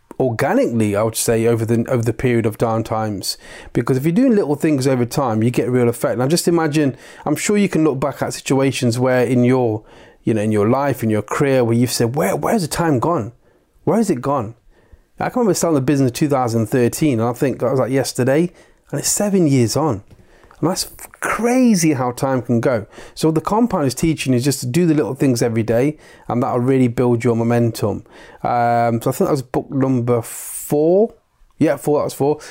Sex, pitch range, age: male, 115-145 Hz, 30-49